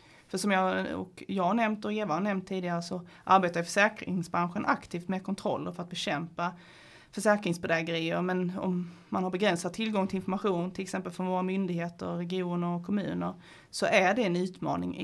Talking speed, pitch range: 170 wpm, 175-200 Hz